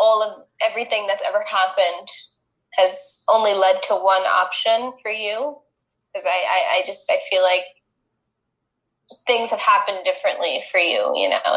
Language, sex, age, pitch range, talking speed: English, female, 10-29, 185-255 Hz, 155 wpm